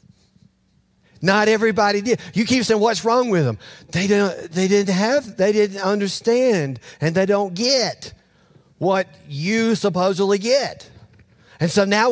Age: 50-69